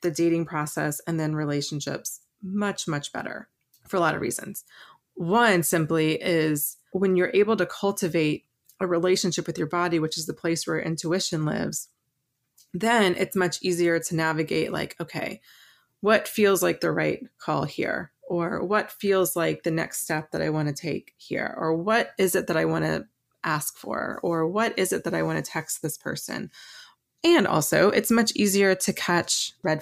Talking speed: 185 wpm